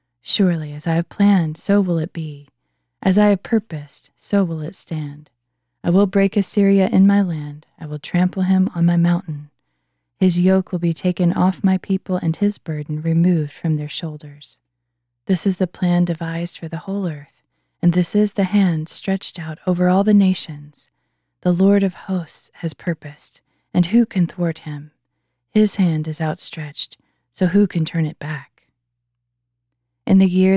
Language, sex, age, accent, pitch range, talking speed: English, female, 20-39, American, 150-190 Hz, 175 wpm